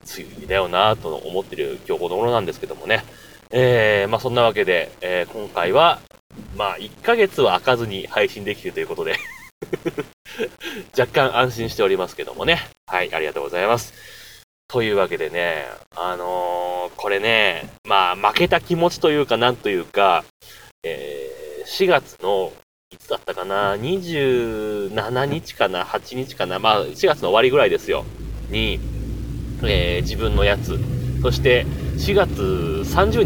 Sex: male